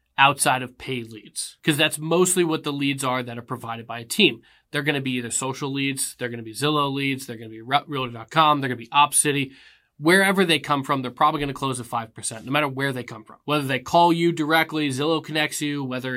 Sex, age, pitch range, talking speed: male, 20-39, 125-155 Hz, 245 wpm